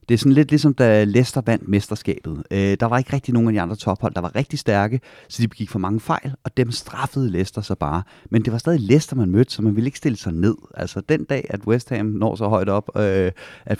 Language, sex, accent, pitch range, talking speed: Danish, male, native, 100-125 Hz, 265 wpm